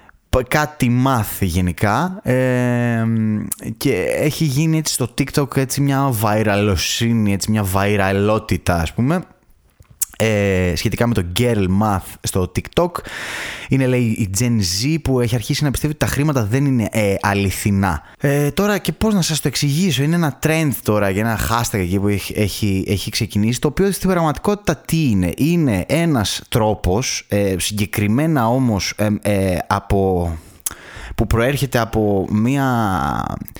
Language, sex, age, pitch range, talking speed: Greek, male, 20-39, 100-135 Hz, 145 wpm